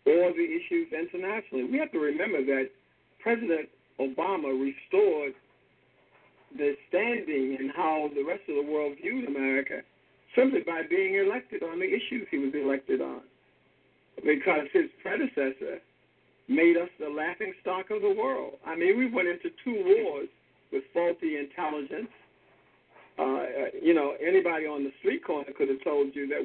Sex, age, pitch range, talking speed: male, 60-79, 140-195 Hz, 150 wpm